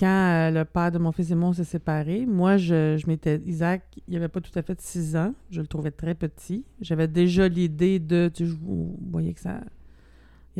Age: 30-49